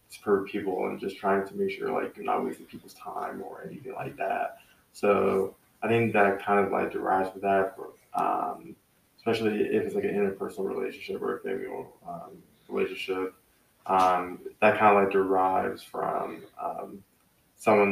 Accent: American